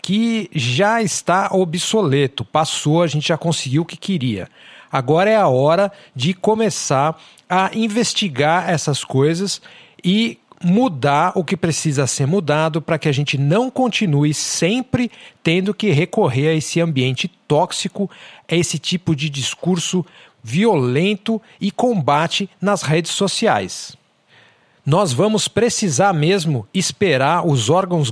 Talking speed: 130 wpm